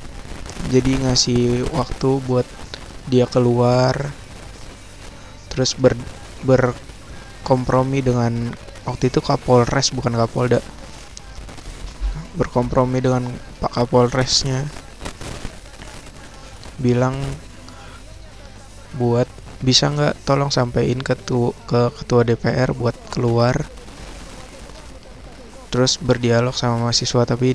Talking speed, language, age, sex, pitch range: 80 wpm, Indonesian, 20-39, male, 115-130 Hz